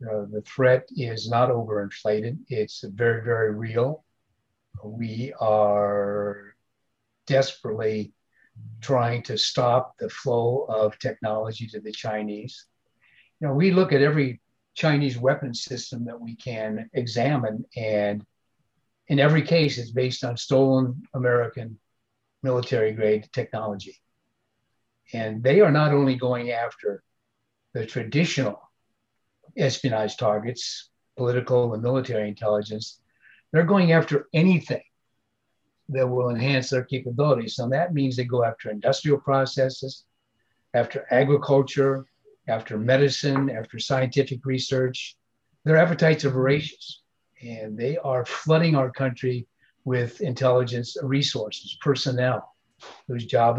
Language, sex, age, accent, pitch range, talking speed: English, male, 60-79, American, 110-135 Hz, 115 wpm